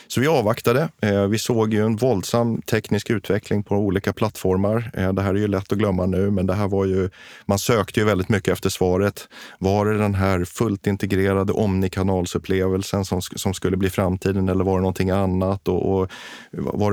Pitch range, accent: 90-105 Hz, Swedish